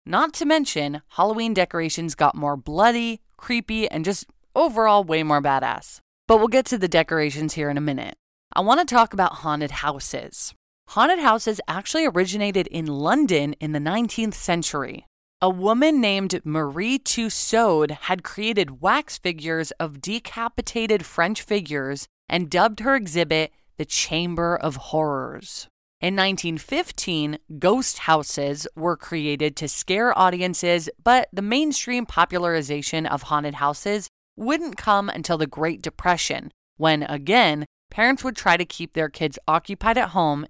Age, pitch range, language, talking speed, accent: 20-39, 150-220 Hz, English, 145 wpm, American